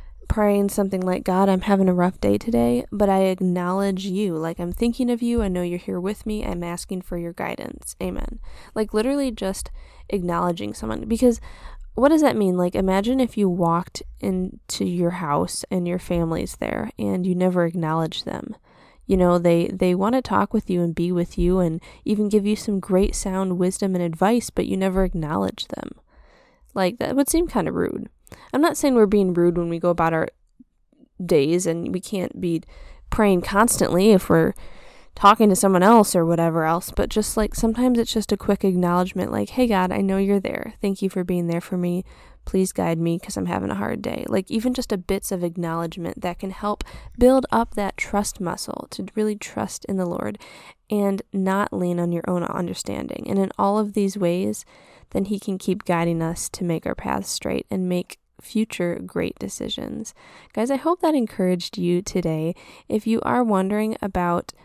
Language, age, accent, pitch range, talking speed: English, 10-29, American, 175-210 Hz, 200 wpm